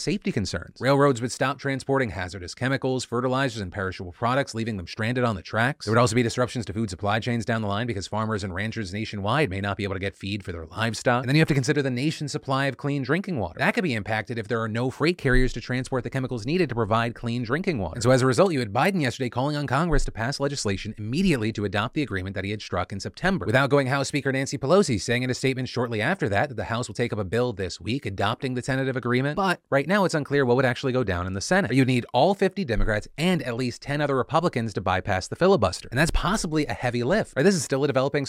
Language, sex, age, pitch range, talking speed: English, male, 30-49, 105-135 Hz, 270 wpm